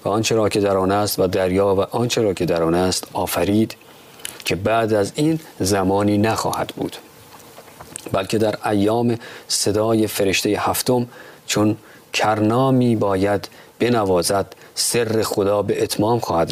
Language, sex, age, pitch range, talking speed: Persian, male, 40-59, 95-115 Hz, 135 wpm